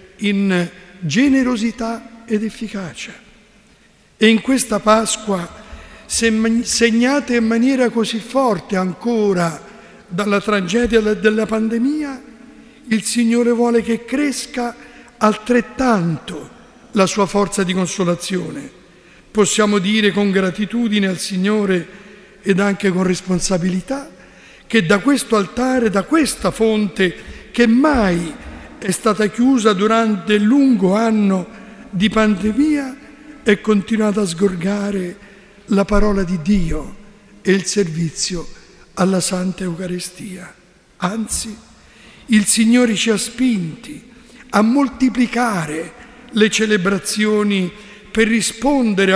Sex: male